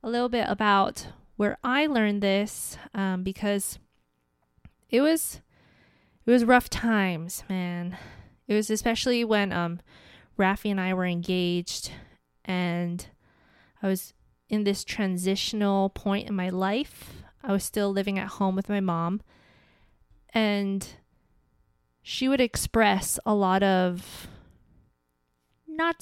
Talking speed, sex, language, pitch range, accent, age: 125 wpm, female, English, 185-220 Hz, American, 20-39